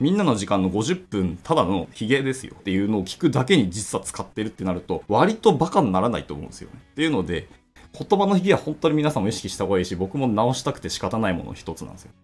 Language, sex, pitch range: Japanese, male, 95-140 Hz